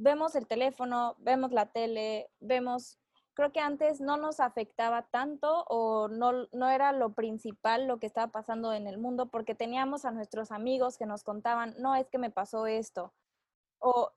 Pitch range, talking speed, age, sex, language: 220-260 Hz, 180 wpm, 20-39, female, Spanish